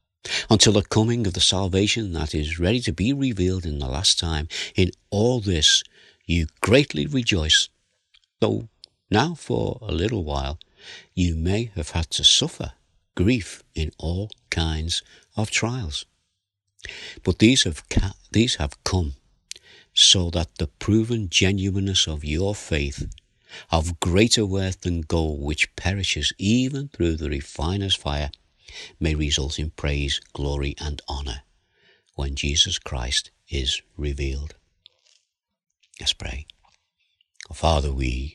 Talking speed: 130 wpm